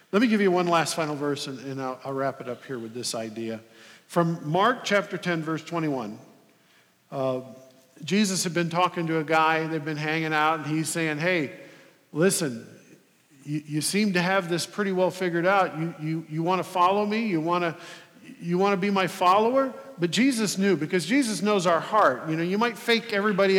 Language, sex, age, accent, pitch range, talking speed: English, male, 50-69, American, 150-195 Hz, 210 wpm